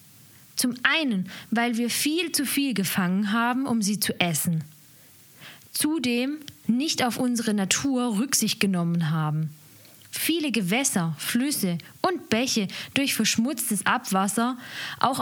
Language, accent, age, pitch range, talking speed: German, German, 20-39, 170-250 Hz, 120 wpm